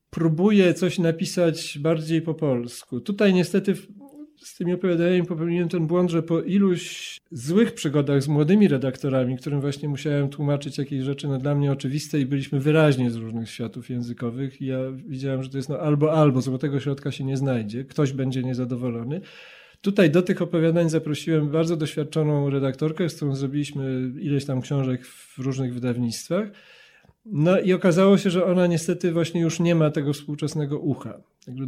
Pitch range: 140-175 Hz